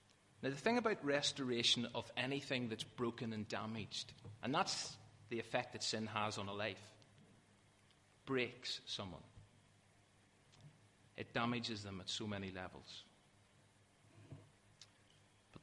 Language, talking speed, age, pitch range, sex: English, 120 wpm, 30-49, 105-130 Hz, male